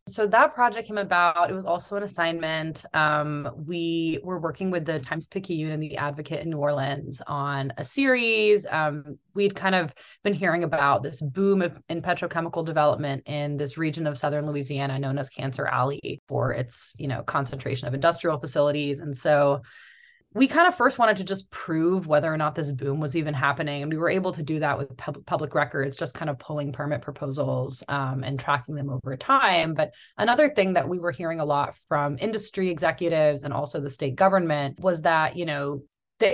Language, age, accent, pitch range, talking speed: English, 20-39, American, 145-175 Hz, 200 wpm